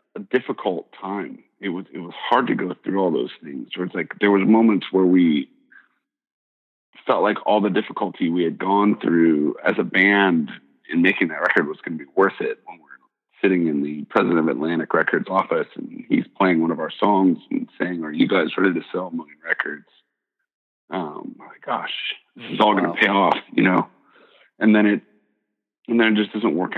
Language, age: English, 40-59